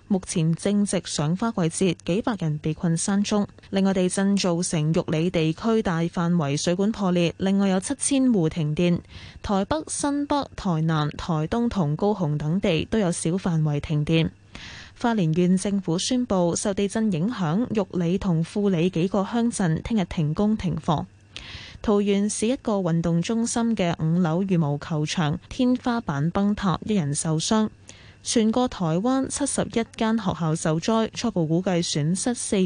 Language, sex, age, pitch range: Chinese, female, 10-29, 165-220 Hz